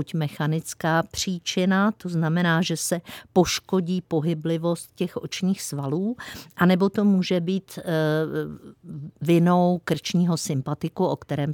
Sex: female